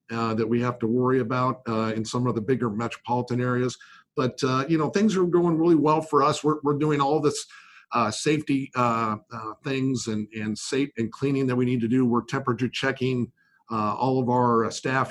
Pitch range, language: 115-145 Hz, English